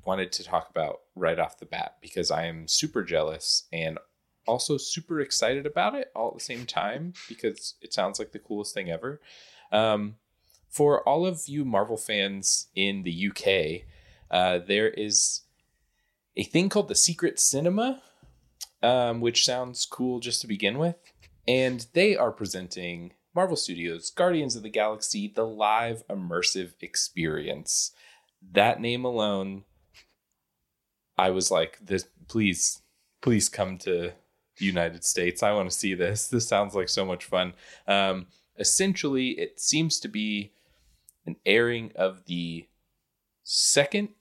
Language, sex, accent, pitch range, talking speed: English, male, American, 95-135 Hz, 150 wpm